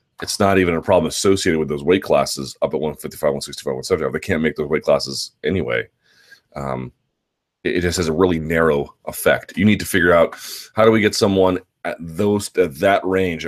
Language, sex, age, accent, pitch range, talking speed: English, male, 30-49, American, 80-110 Hz, 205 wpm